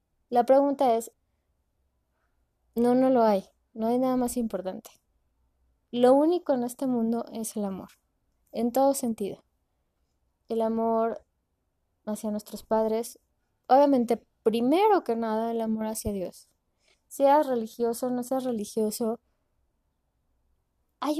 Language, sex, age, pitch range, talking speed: Spanish, female, 20-39, 205-260 Hz, 120 wpm